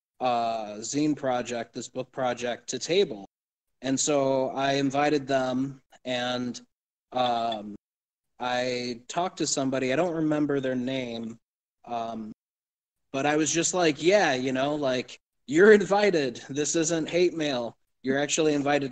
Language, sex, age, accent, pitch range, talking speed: English, male, 20-39, American, 120-145 Hz, 135 wpm